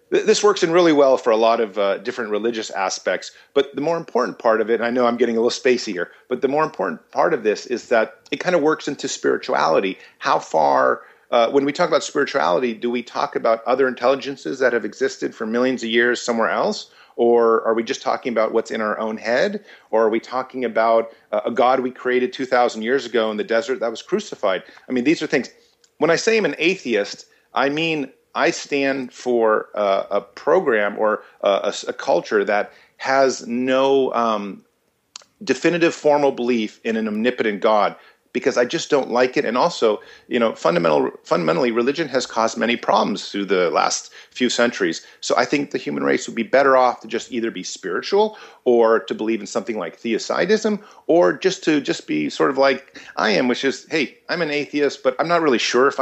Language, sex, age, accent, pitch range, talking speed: English, male, 40-59, American, 115-150 Hz, 210 wpm